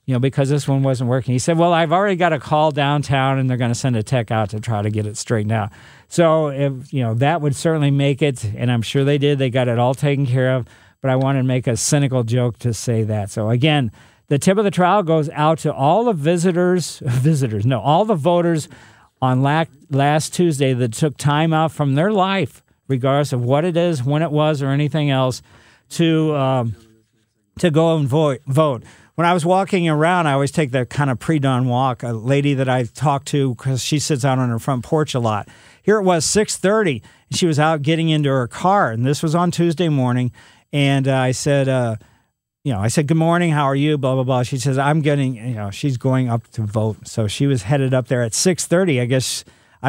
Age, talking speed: 50-69, 235 wpm